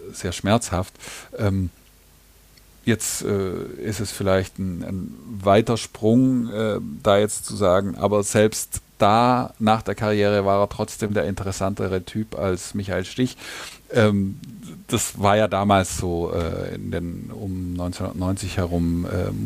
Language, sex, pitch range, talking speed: German, male, 90-110 Hz, 135 wpm